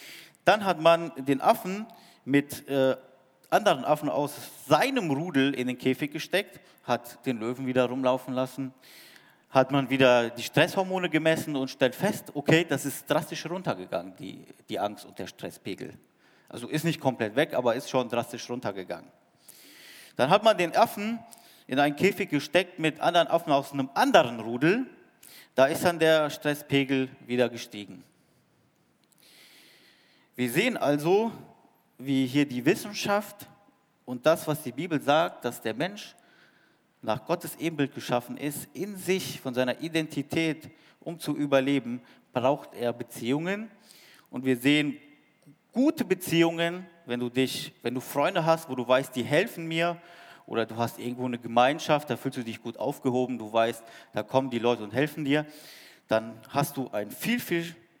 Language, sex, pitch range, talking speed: German, male, 125-165 Hz, 155 wpm